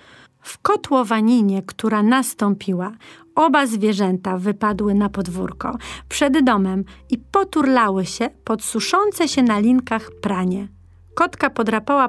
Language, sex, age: Polish, female, 40-59